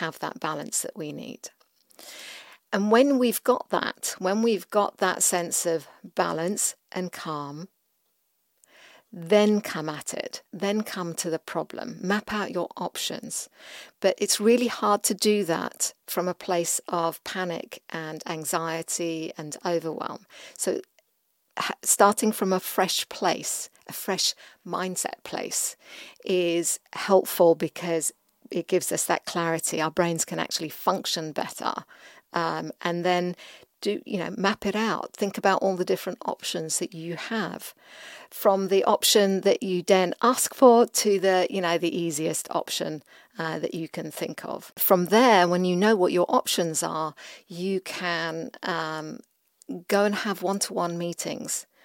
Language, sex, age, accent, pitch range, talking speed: English, female, 50-69, British, 170-205 Hz, 150 wpm